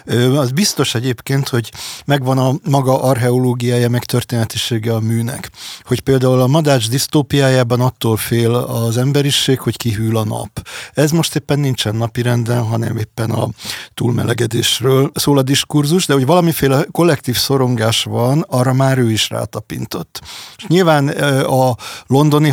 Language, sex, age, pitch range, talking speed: Hungarian, male, 50-69, 120-140 Hz, 135 wpm